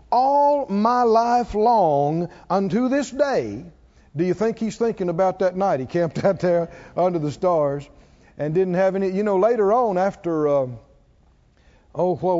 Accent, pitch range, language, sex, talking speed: American, 170-230 Hz, English, male, 165 wpm